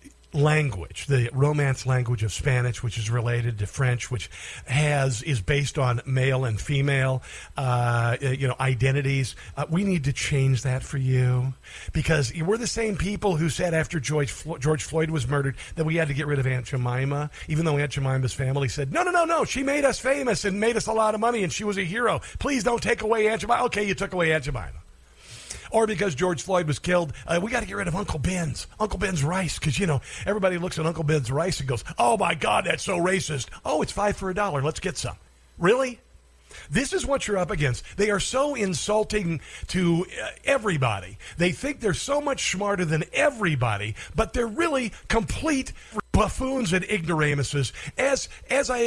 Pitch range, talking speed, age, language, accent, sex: 130-210 Hz, 205 wpm, 50-69, English, American, male